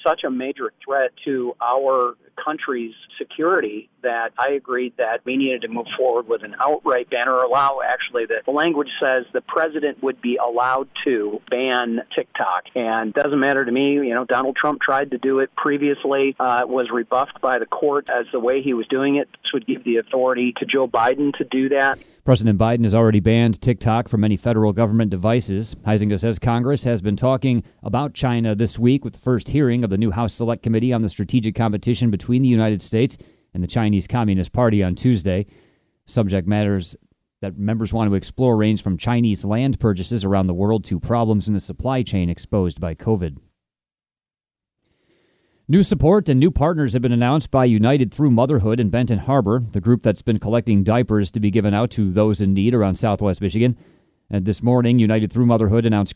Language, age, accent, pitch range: English, 40-59, American, 105-130 Hz